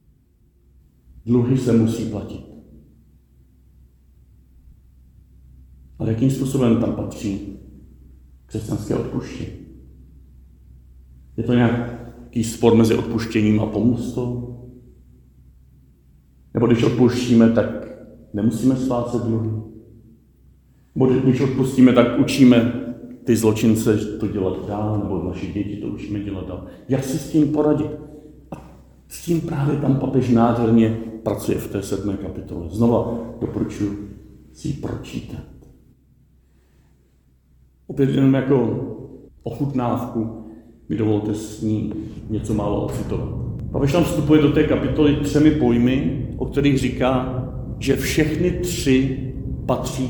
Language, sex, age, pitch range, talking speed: Czech, male, 50-69, 95-130 Hz, 105 wpm